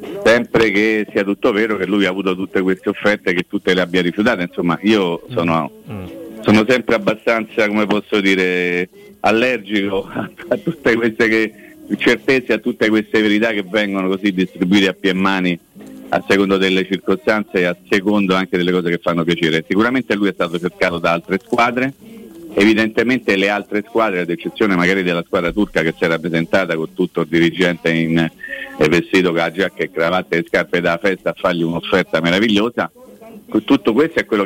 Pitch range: 90-120 Hz